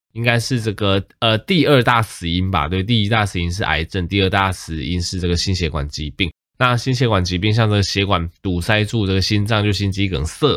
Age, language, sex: 20-39, Chinese, male